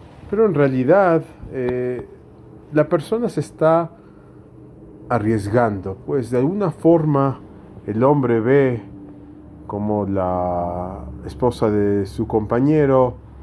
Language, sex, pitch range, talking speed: English, male, 110-155 Hz, 100 wpm